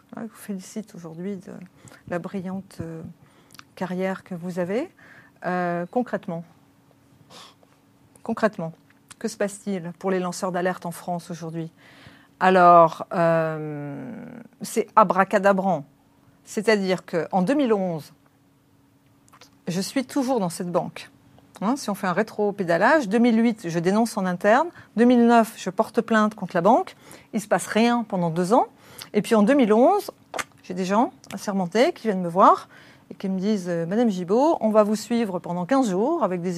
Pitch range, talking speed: 175-225 Hz, 150 wpm